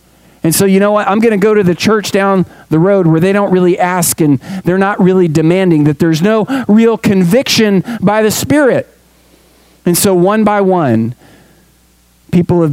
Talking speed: 185 wpm